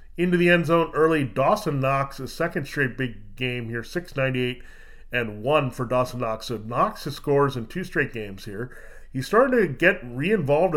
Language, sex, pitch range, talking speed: English, male, 120-155 Hz, 180 wpm